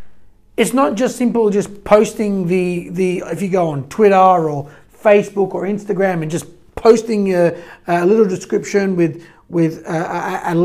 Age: 30-49